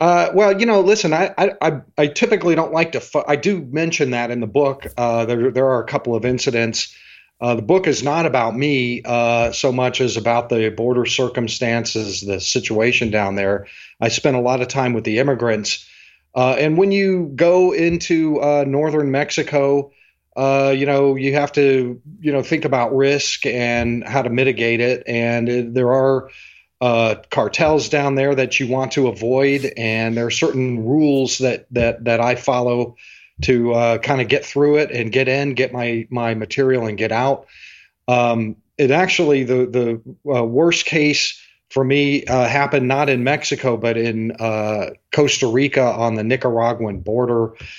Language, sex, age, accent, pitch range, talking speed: English, male, 40-59, American, 115-140 Hz, 180 wpm